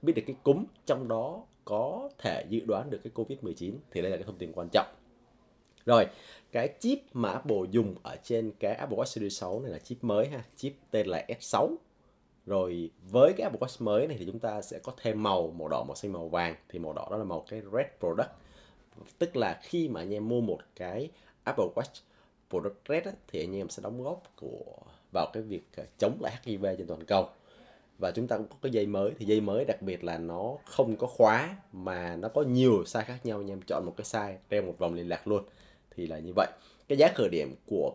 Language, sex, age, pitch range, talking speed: Vietnamese, male, 20-39, 95-120 Hz, 230 wpm